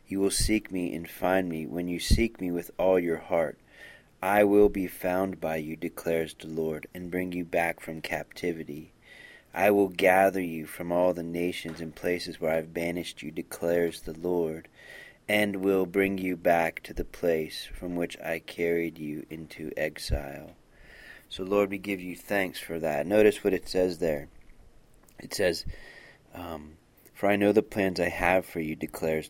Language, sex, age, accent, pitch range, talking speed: English, male, 30-49, American, 80-95 Hz, 180 wpm